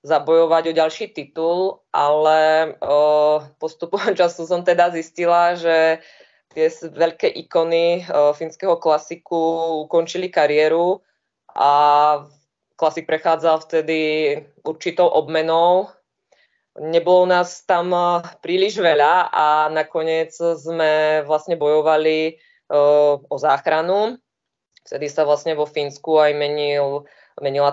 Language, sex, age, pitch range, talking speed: Czech, female, 20-39, 150-165 Hz, 105 wpm